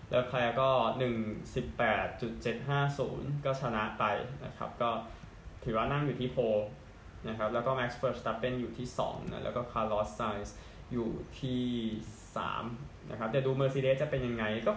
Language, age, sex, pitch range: Thai, 20-39, male, 105-130 Hz